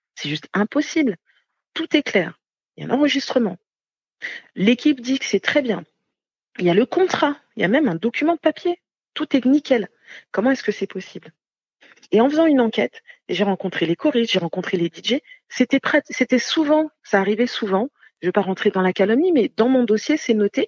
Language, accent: French, French